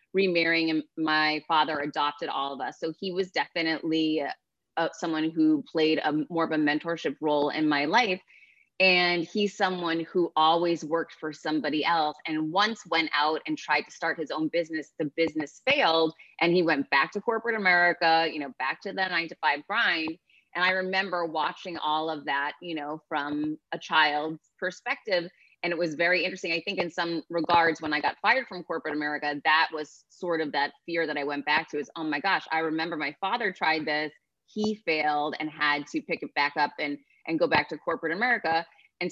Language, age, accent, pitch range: English, 30-49, American, 155-180 Hz